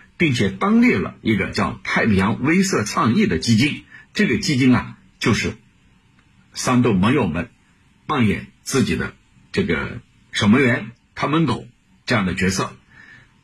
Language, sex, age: Chinese, male, 60-79